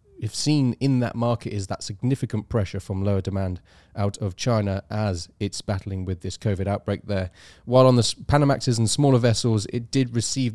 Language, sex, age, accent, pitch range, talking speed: English, male, 30-49, British, 100-125 Hz, 190 wpm